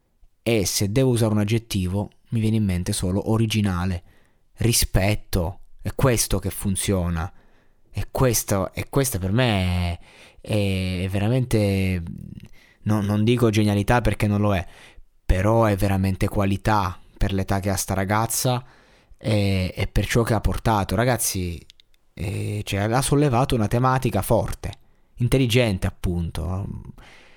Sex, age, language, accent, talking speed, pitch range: male, 20-39, Italian, native, 125 wpm, 100-125 Hz